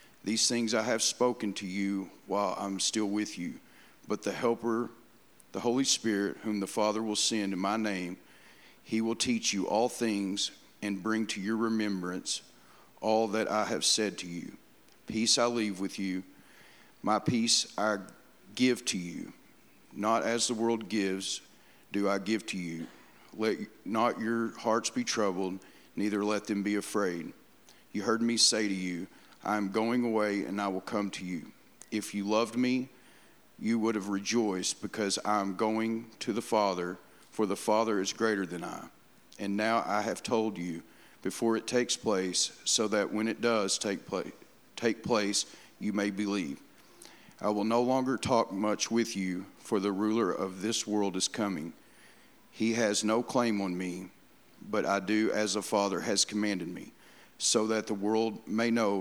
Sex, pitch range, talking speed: male, 100-115 Hz, 175 wpm